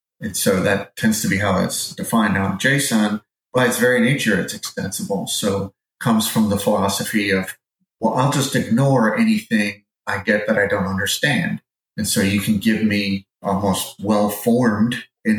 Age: 30-49